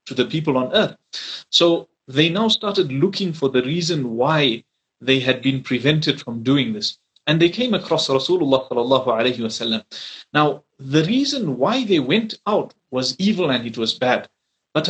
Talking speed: 160 wpm